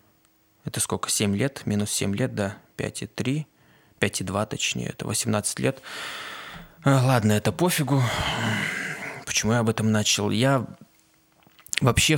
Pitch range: 100-125 Hz